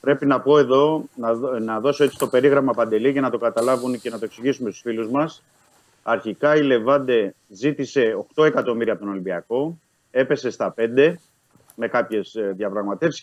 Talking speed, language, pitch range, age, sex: 165 wpm, Greek, 110-145 Hz, 30-49, male